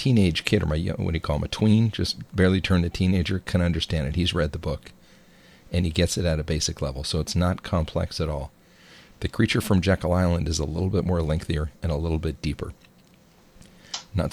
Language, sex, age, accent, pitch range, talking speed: English, male, 40-59, American, 80-95 Hz, 225 wpm